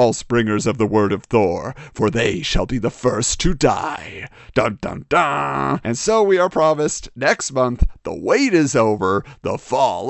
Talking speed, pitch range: 185 wpm, 120-175 Hz